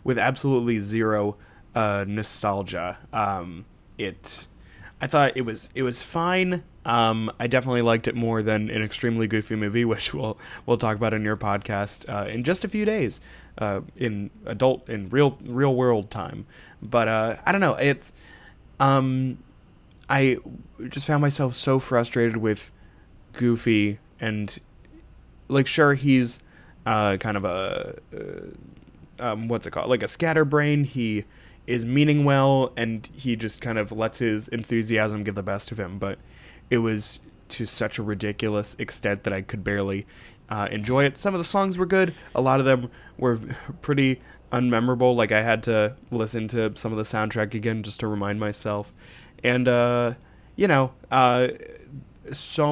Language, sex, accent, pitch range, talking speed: English, male, American, 105-130 Hz, 165 wpm